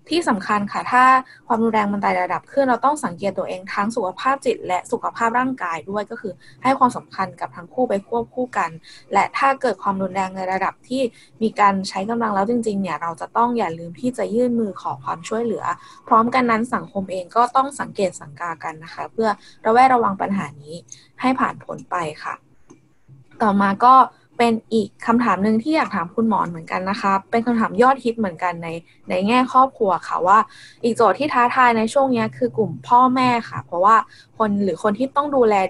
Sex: female